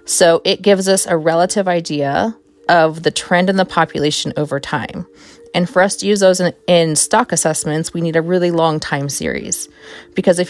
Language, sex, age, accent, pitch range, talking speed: English, female, 30-49, American, 155-185 Hz, 195 wpm